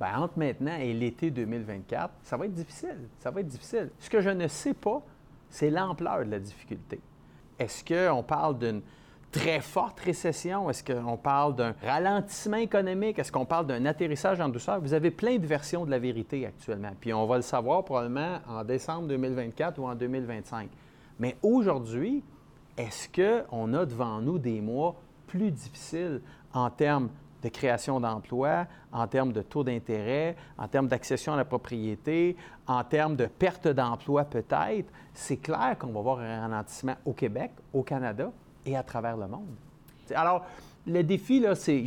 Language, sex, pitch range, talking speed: French, male, 120-170 Hz, 175 wpm